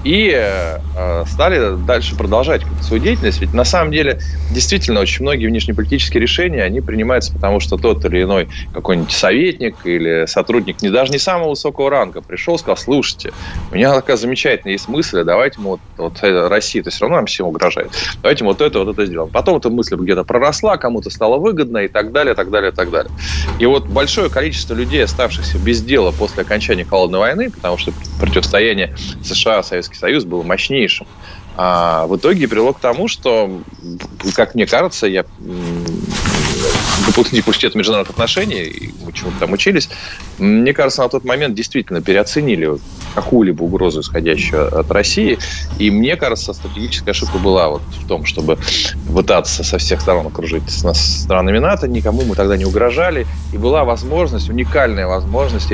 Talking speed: 165 wpm